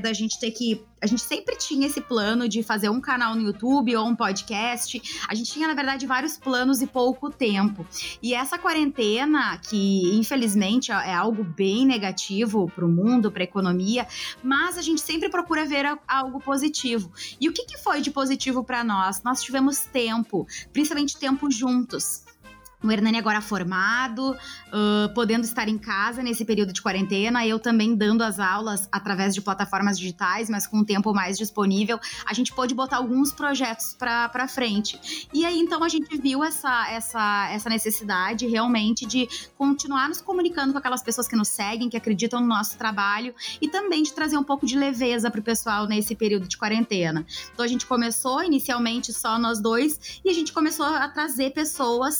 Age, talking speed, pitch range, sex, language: 20-39, 180 wpm, 210-275 Hz, female, Portuguese